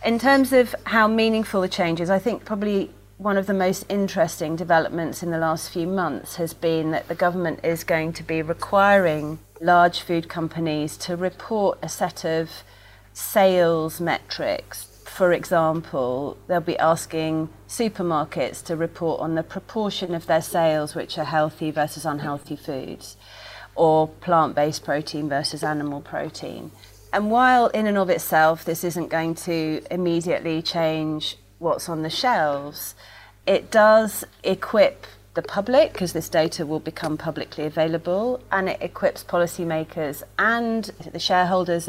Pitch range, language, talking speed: 155-185 Hz, English, 150 wpm